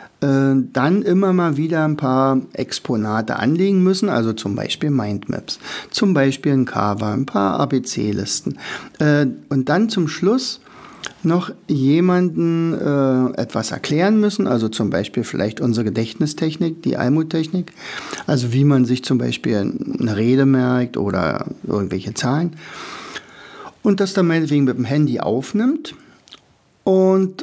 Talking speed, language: 125 wpm, German